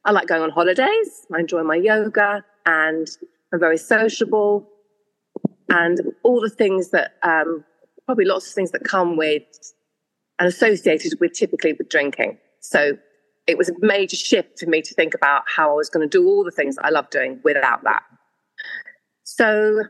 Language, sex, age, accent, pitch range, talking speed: English, female, 40-59, British, 165-265 Hz, 175 wpm